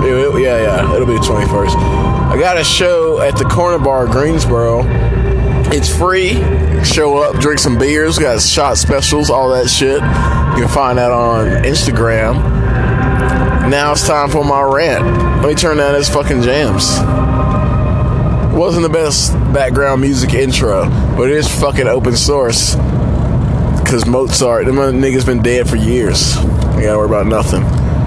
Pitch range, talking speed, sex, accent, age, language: 120-155 Hz, 155 wpm, male, American, 20-39, English